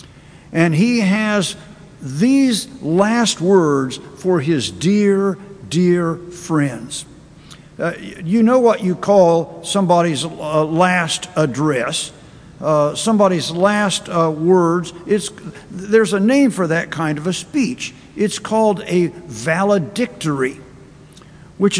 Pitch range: 160-205 Hz